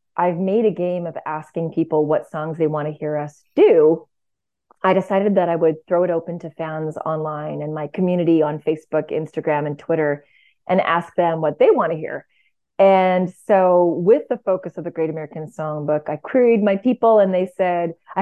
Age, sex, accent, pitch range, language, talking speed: 30-49, female, American, 165-215 Hz, English, 200 wpm